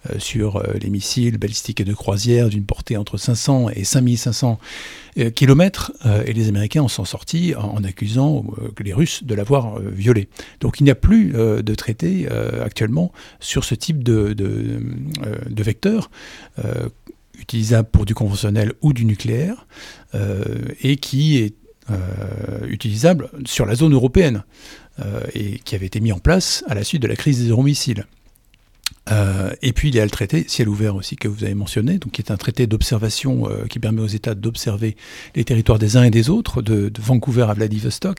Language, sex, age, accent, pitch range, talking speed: French, male, 60-79, French, 105-125 Hz, 180 wpm